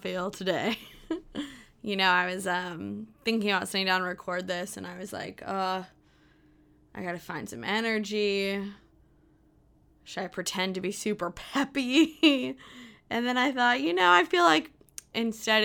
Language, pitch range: English, 175-225 Hz